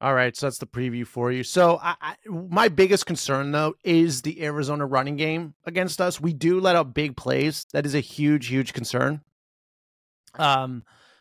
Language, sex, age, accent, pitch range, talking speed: English, male, 30-49, American, 135-170 Hz, 185 wpm